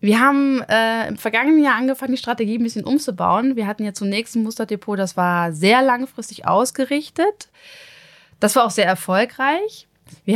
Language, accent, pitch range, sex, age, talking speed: German, German, 190-240 Hz, female, 20-39, 170 wpm